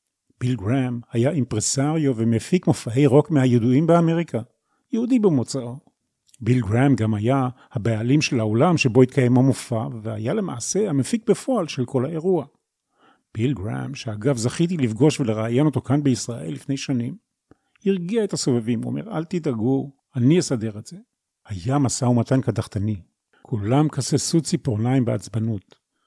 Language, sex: Hebrew, male